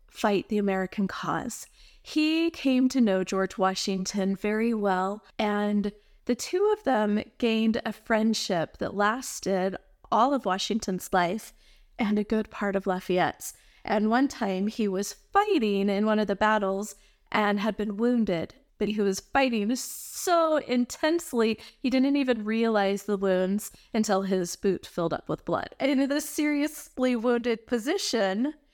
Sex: female